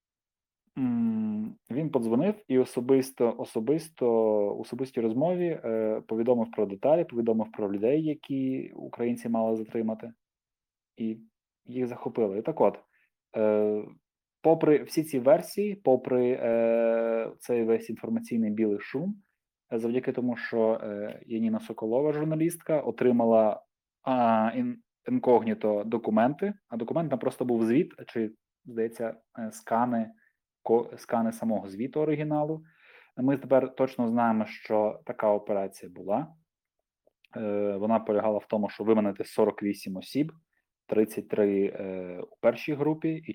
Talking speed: 110 wpm